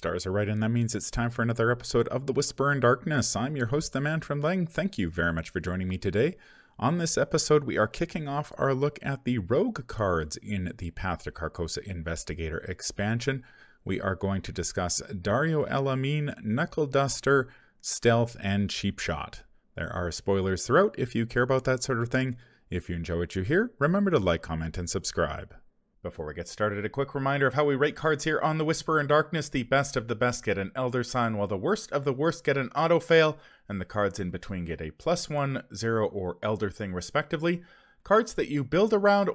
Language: English